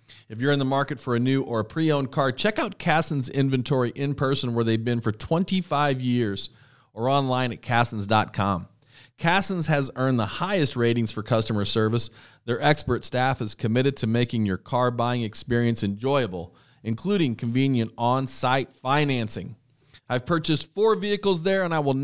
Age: 40-59